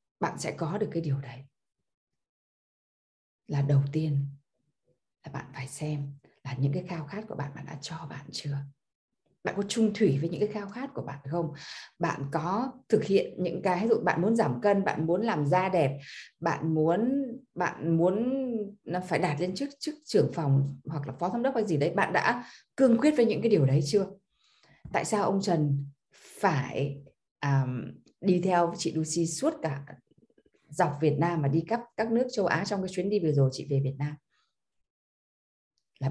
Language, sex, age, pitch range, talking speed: Vietnamese, female, 20-39, 145-215 Hz, 200 wpm